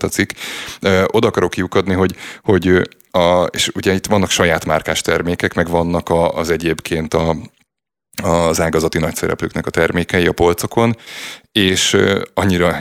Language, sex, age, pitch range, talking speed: Hungarian, male, 30-49, 85-100 Hz, 135 wpm